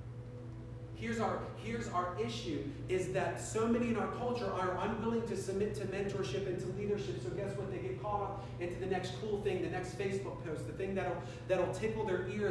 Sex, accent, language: male, American, English